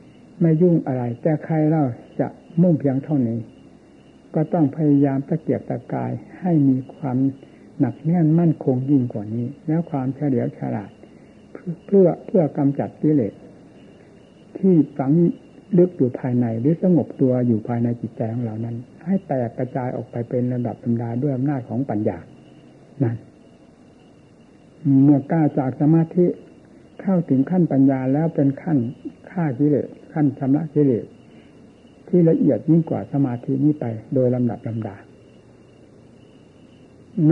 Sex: male